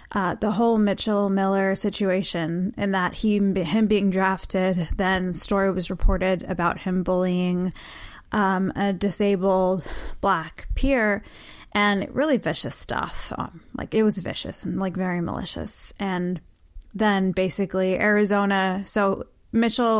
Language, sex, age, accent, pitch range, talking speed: English, female, 20-39, American, 180-200 Hz, 130 wpm